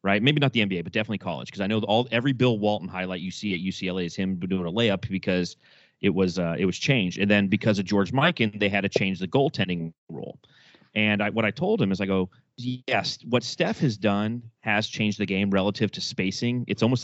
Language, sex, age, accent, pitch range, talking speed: English, male, 30-49, American, 95-125 Hz, 240 wpm